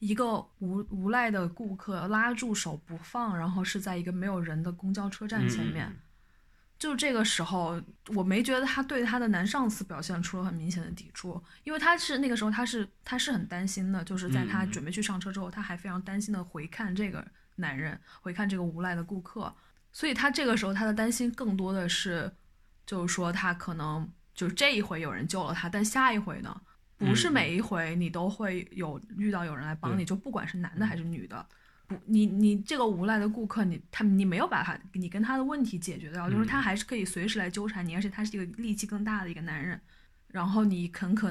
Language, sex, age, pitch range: Chinese, female, 20-39, 180-215 Hz